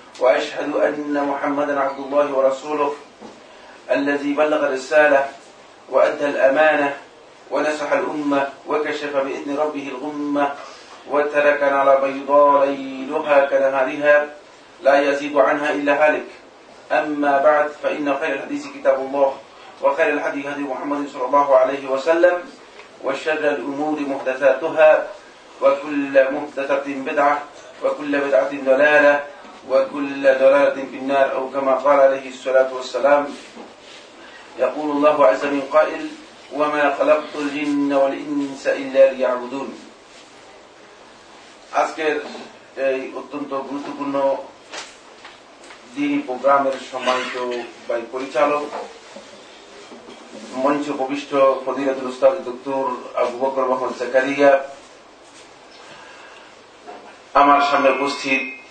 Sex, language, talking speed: male, Bengali, 55 wpm